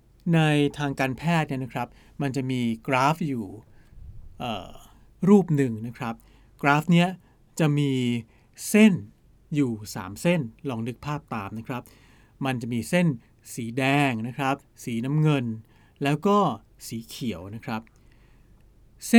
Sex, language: male, Thai